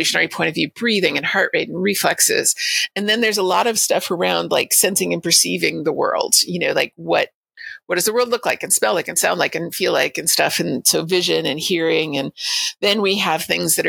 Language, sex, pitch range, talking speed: English, female, 170-235 Hz, 240 wpm